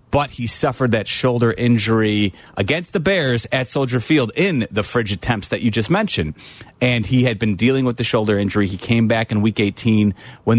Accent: American